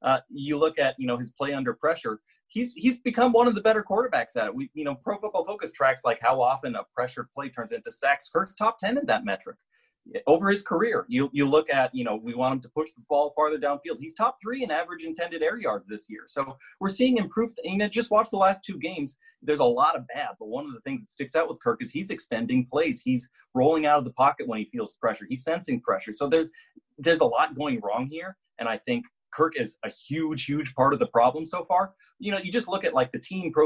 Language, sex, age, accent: English, male, 30-49, American